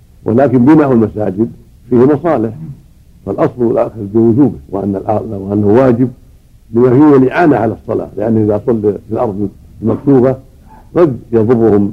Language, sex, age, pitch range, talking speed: Arabic, male, 60-79, 100-120 Hz, 120 wpm